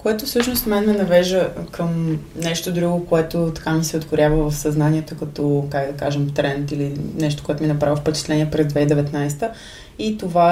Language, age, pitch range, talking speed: Bulgarian, 20-39, 150-175 Hz, 170 wpm